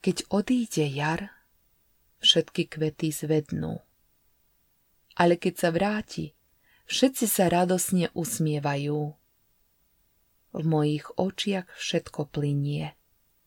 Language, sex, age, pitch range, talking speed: Slovak, female, 30-49, 150-185 Hz, 85 wpm